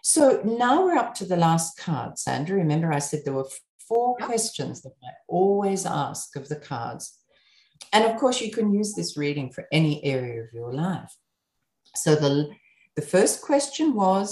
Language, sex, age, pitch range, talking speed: English, female, 50-69, 145-220 Hz, 180 wpm